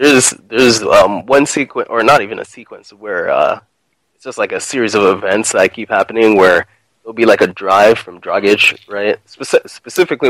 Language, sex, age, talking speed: English, male, 20-39, 190 wpm